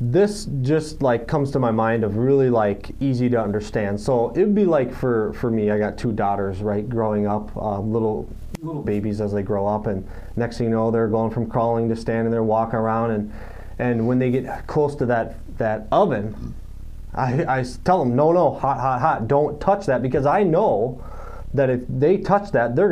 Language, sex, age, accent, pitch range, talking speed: English, male, 20-39, American, 110-135 Hz, 210 wpm